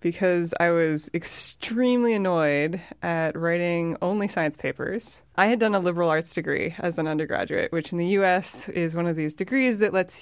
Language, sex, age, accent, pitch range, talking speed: English, female, 20-39, American, 160-200 Hz, 180 wpm